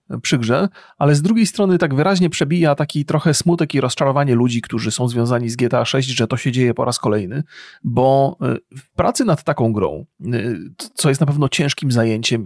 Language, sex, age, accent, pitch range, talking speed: Polish, male, 30-49, native, 130-170 Hz, 195 wpm